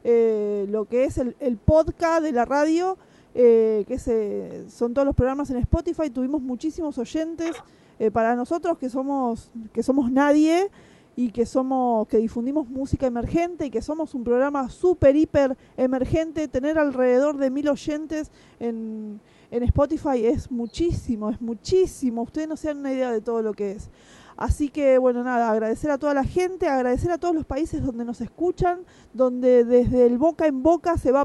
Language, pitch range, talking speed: Spanish, 240-310 Hz, 180 wpm